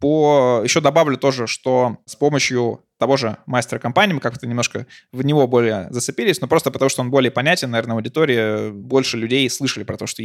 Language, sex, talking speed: Russian, male, 185 wpm